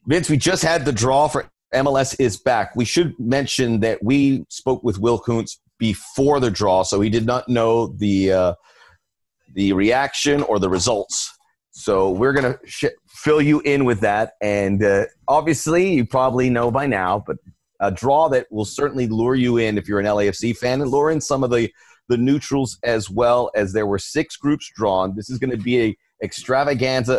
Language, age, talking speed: English, 30-49, 195 wpm